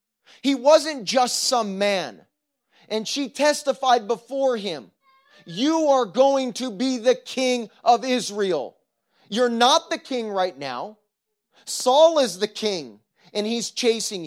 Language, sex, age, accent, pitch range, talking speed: English, male, 30-49, American, 190-250 Hz, 135 wpm